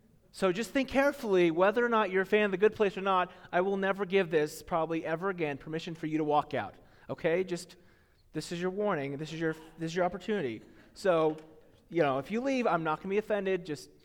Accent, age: American, 30-49